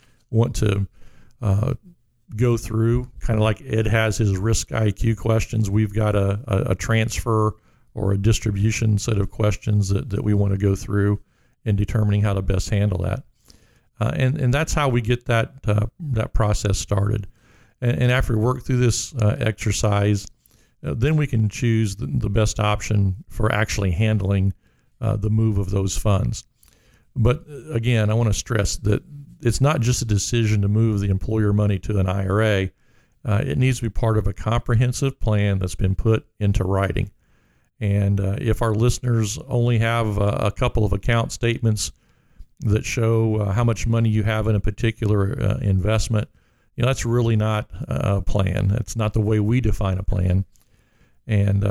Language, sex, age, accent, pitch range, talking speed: English, male, 50-69, American, 100-120 Hz, 180 wpm